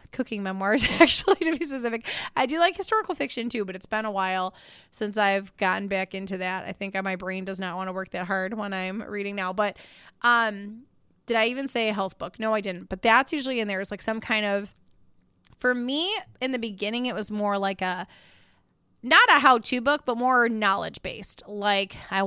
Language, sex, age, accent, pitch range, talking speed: English, female, 20-39, American, 190-235 Hz, 215 wpm